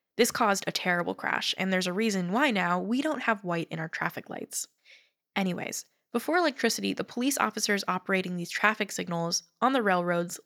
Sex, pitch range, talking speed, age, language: female, 175-225 Hz, 185 wpm, 10-29, English